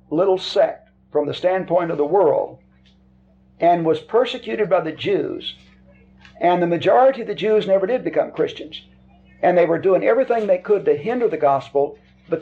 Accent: American